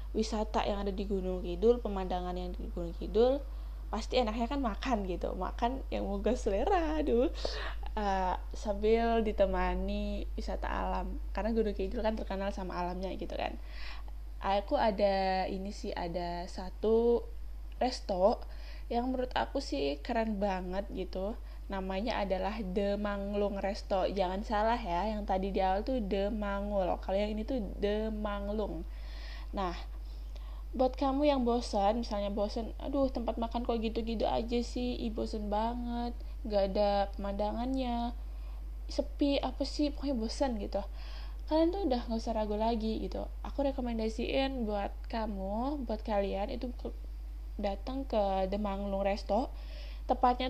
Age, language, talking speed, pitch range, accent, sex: 20-39, Indonesian, 135 wpm, 195-235 Hz, native, female